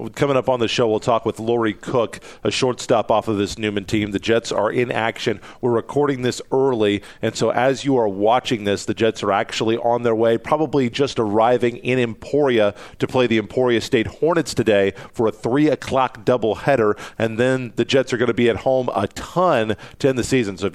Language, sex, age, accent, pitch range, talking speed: English, male, 40-59, American, 110-130 Hz, 215 wpm